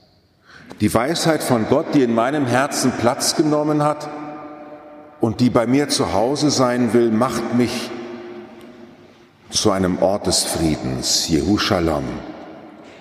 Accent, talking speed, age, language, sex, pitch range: German, 125 wpm, 50-69, German, male, 105-130 Hz